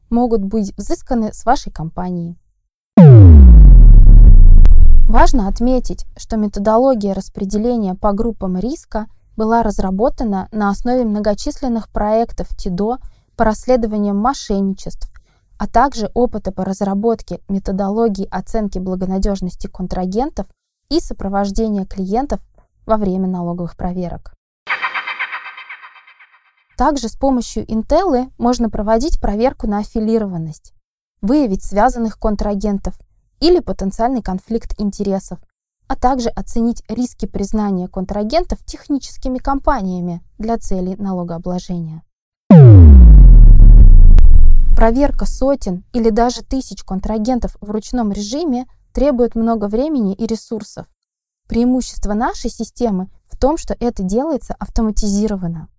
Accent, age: native, 20-39